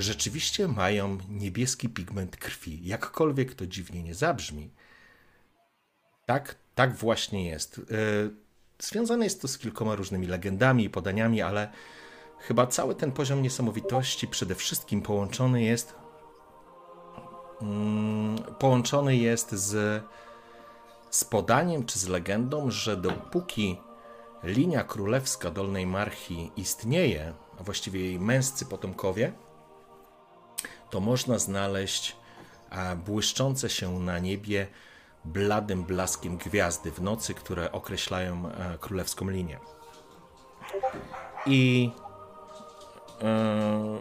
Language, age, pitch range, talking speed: Polish, 40-59, 100-135 Hz, 95 wpm